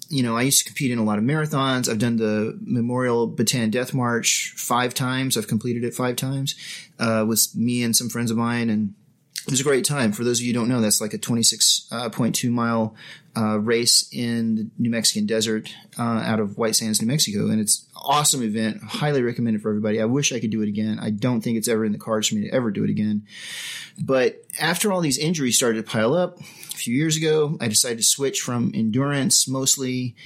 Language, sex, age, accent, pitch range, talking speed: English, male, 30-49, American, 115-155 Hz, 230 wpm